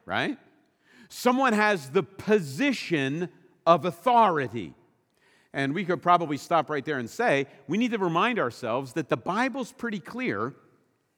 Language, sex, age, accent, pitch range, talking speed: English, male, 50-69, American, 160-245 Hz, 140 wpm